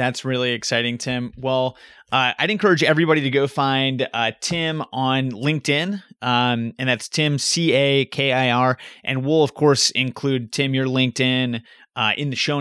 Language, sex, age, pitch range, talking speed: English, male, 30-49, 120-140 Hz, 155 wpm